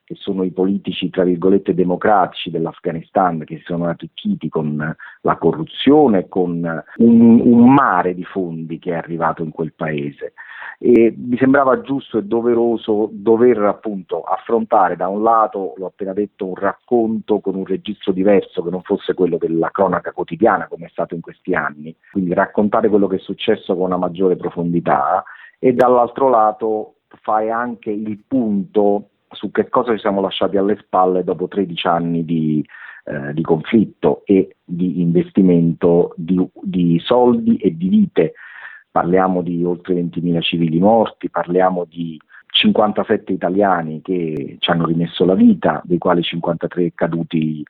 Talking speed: 155 wpm